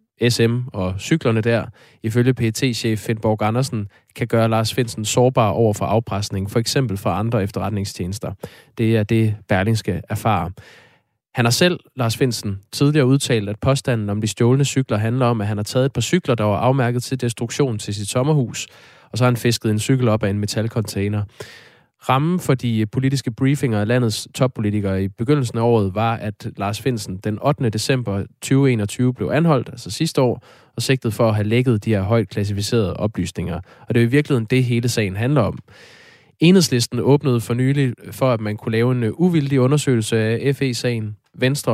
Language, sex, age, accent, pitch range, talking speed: Danish, male, 20-39, native, 105-130 Hz, 185 wpm